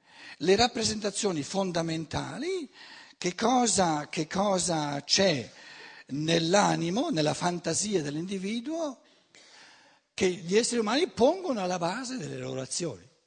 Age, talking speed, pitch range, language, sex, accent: 60-79, 95 wpm, 155-240 Hz, Italian, male, native